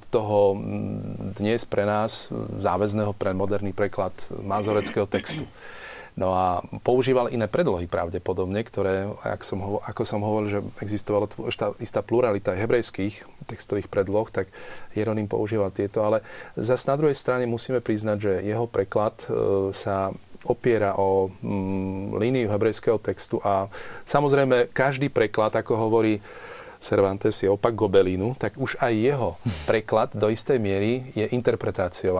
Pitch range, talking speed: 100-120 Hz, 130 wpm